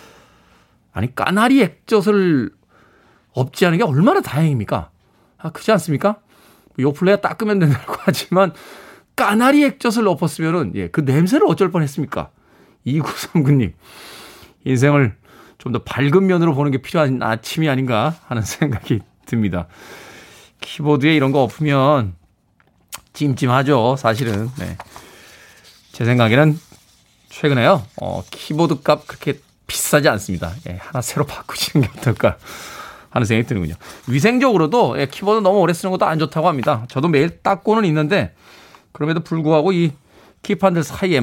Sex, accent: male, native